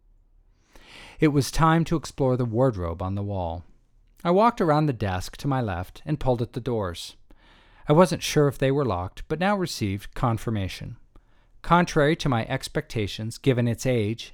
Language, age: English, 40-59